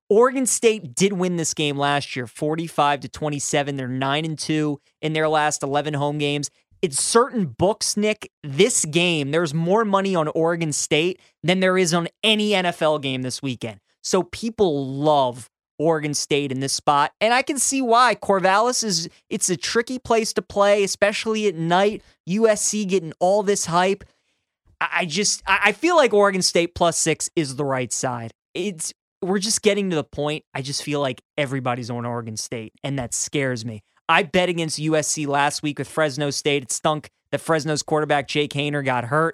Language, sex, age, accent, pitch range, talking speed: English, male, 20-39, American, 140-185 Hz, 185 wpm